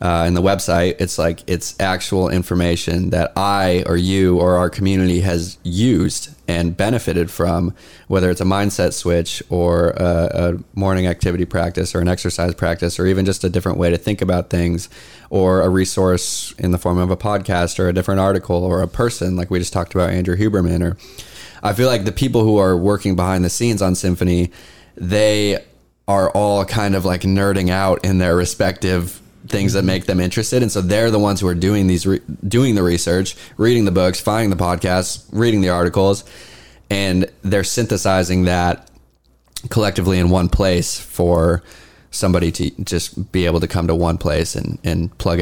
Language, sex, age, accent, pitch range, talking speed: English, male, 20-39, American, 85-95 Hz, 190 wpm